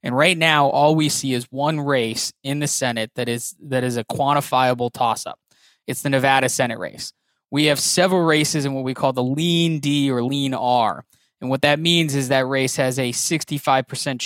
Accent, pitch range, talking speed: American, 125-150 Hz, 200 wpm